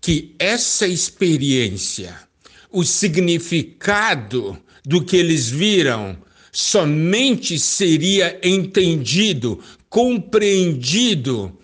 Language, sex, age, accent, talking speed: Portuguese, male, 60-79, Brazilian, 65 wpm